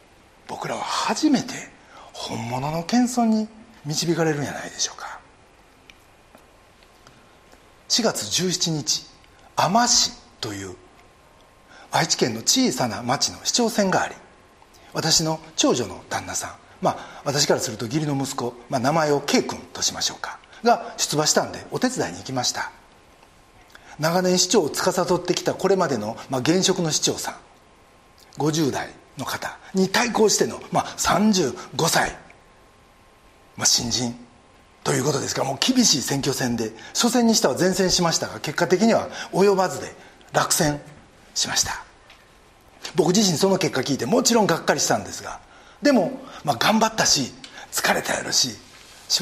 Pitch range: 145-215 Hz